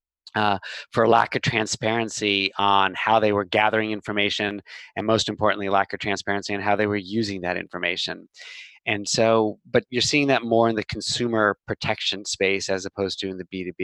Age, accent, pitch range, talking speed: 20-39, American, 105-125 Hz, 180 wpm